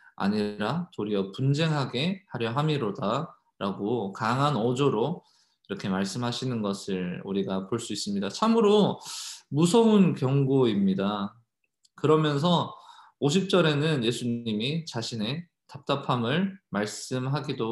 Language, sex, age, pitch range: Korean, male, 20-39, 110-160 Hz